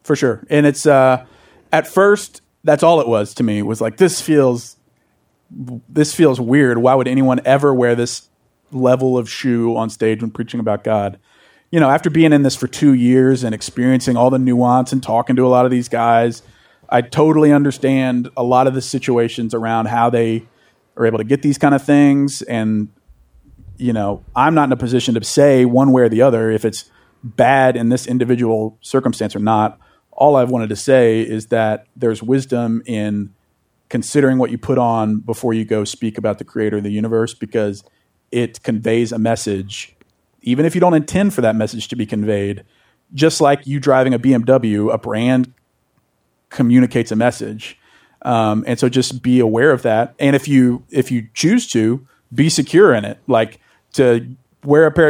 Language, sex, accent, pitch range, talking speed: English, male, American, 115-135 Hz, 190 wpm